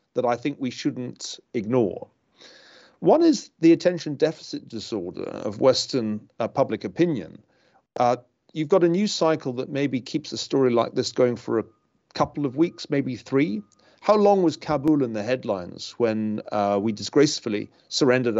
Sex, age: male, 40-59